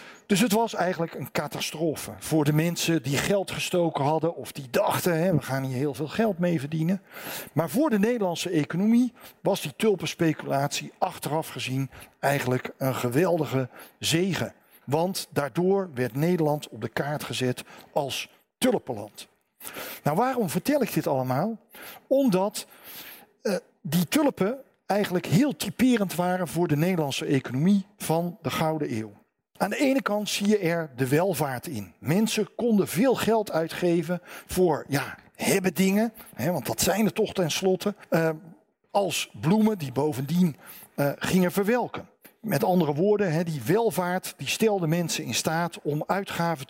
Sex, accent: male, Dutch